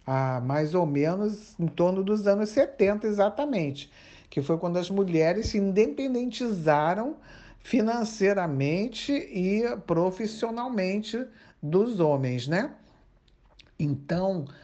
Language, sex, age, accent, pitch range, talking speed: Portuguese, male, 60-79, Brazilian, 160-210 Hz, 95 wpm